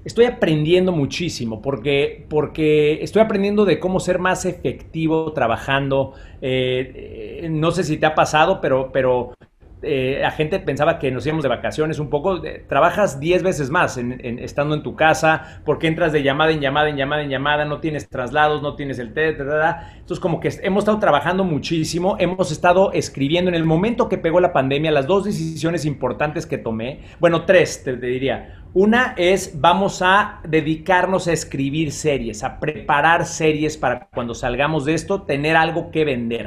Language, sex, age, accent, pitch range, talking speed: Spanish, male, 40-59, Mexican, 135-175 Hz, 185 wpm